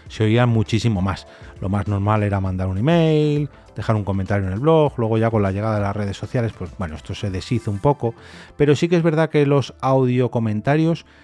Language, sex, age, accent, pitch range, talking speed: Spanish, male, 30-49, Spanish, 100-130 Hz, 220 wpm